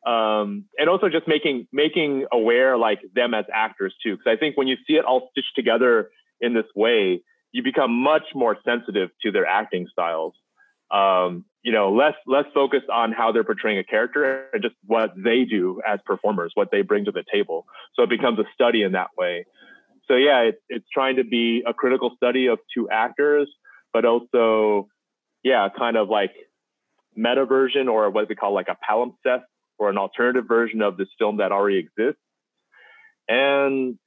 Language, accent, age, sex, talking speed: English, American, 30-49, male, 185 wpm